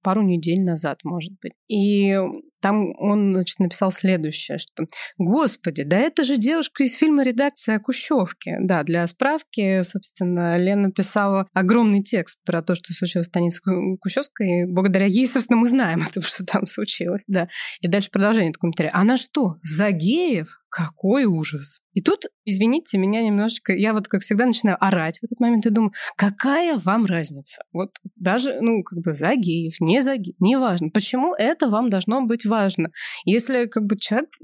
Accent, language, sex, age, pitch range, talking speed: native, Russian, female, 20-39, 180-230 Hz, 180 wpm